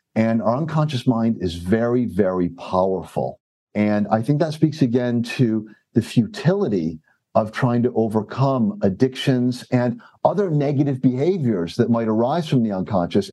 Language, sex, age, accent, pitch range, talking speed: English, male, 50-69, American, 110-145 Hz, 145 wpm